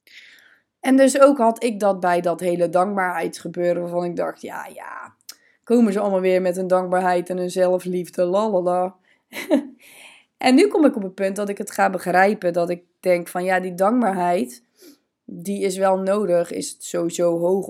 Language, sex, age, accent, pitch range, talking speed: Dutch, female, 20-39, Dutch, 180-230 Hz, 175 wpm